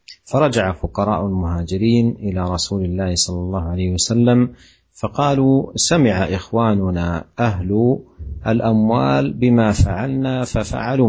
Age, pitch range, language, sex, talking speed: 50-69, 90-115 Hz, Indonesian, male, 95 wpm